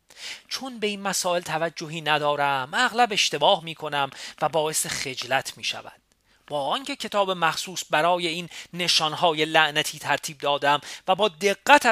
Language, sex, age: Persian, male, 40-59